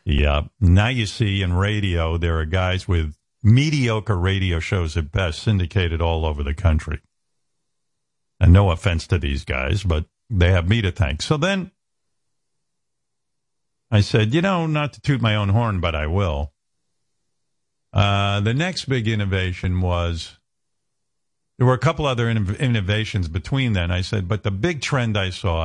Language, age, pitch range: English, 50-69, 85-110 Hz